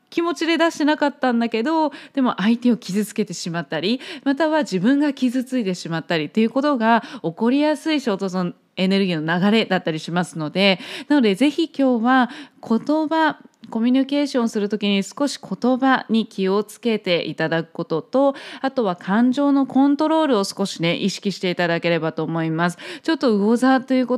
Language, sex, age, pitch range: Japanese, female, 20-39, 195-265 Hz